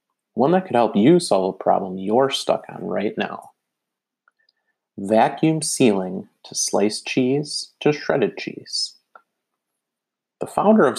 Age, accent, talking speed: 30-49, American, 130 wpm